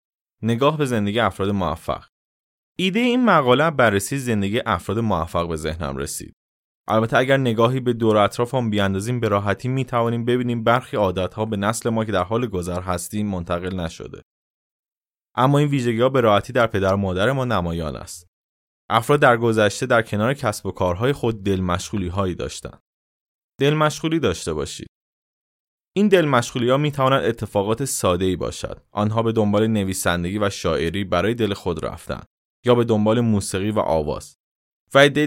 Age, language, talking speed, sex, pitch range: 20-39, Persian, 165 wpm, male, 95-125 Hz